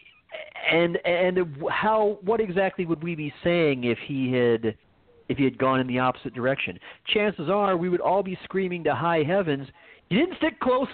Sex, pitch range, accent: male, 135-210 Hz, American